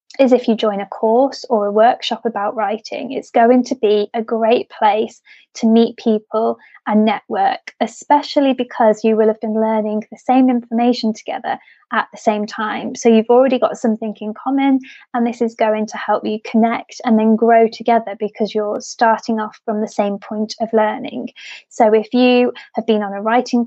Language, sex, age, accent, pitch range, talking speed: English, female, 20-39, British, 215-250 Hz, 190 wpm